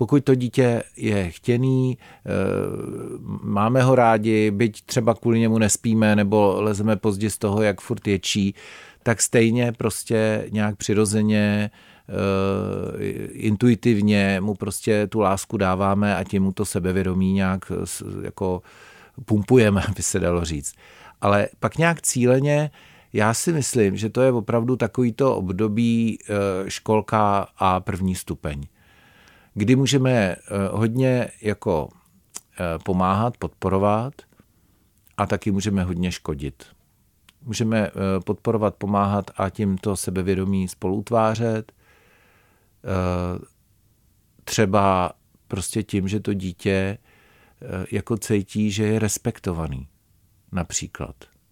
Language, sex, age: Czech, male, 40-59